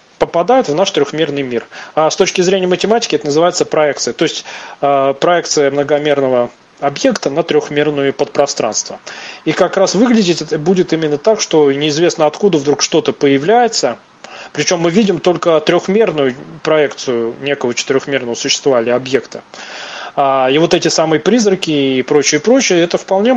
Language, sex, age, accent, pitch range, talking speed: Russian, male, 20-39, native, 145-185 Hz, 145 wpm